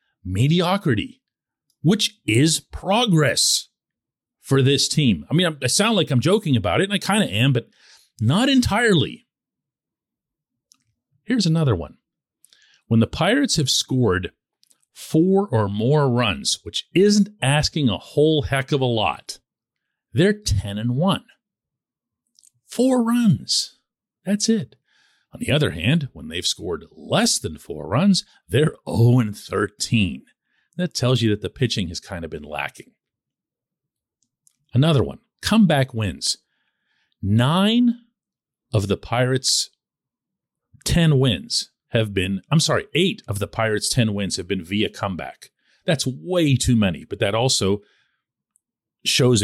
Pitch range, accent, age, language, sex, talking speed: 110-170 Hz, American, 50-69, English, male, 130 wpm